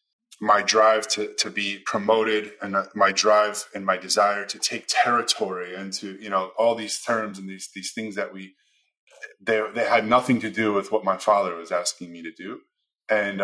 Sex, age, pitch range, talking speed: male, 20-39, 95-115 Hz, 195 wpm